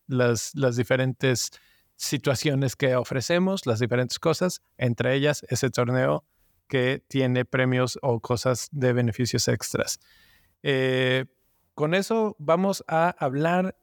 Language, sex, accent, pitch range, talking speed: Spanish, male, Mexican, 130-165 Hz, 115 wpm